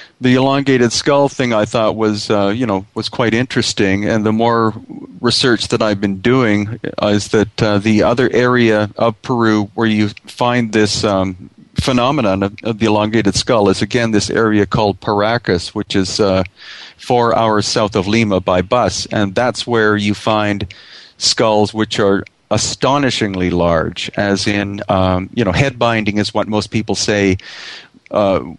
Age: 40-59